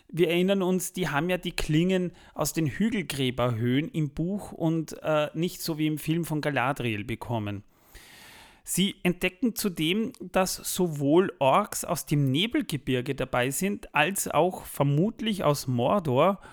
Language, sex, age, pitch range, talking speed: German, male, 30-49, 135-185 Hz, 140 wpm